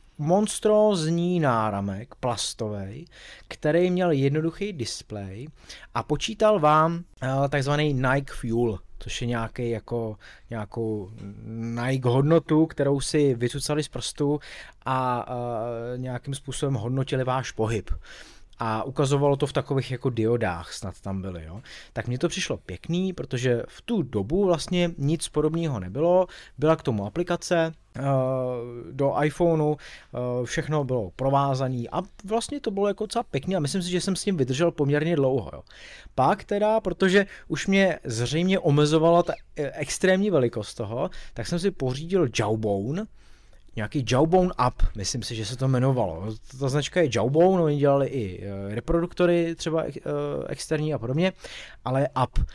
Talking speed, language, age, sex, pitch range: 135 wpm, Czech, 20-39, male, 120-170 Hz